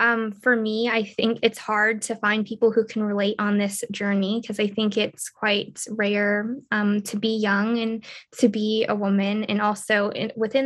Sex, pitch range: female, 215-235 Hz